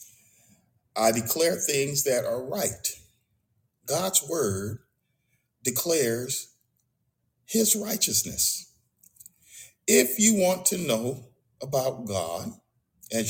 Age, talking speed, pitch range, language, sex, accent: 50-69, 85 wpm, 110-165 Hz, English, male, American